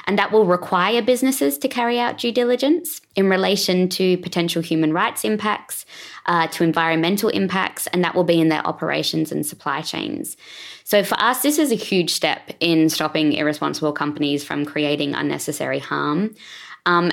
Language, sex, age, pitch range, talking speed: English, female, 20-39, 160-190 Hz, 170 wpm